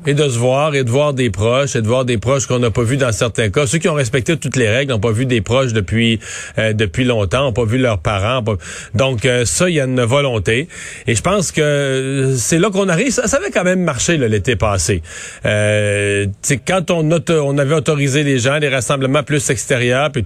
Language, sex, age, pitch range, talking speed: French, male, 40-59, 125-165 Hz, 250 wpm